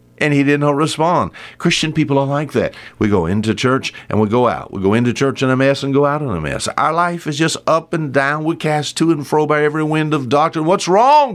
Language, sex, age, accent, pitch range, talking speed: English, male, 60-79, American, 95-145 Hz, 265 wpm